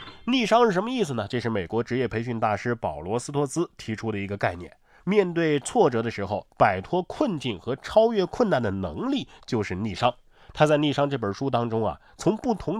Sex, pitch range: male, 110-150 Hz